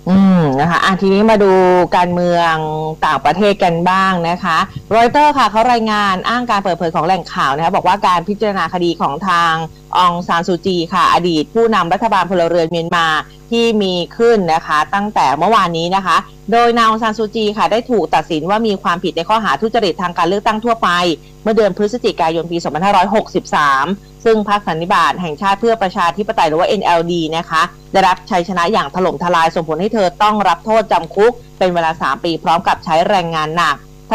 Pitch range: 170-215 Hz